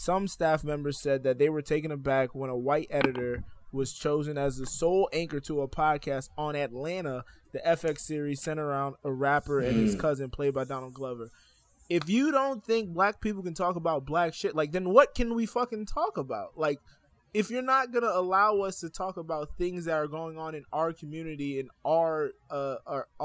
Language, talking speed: English, 200 wpm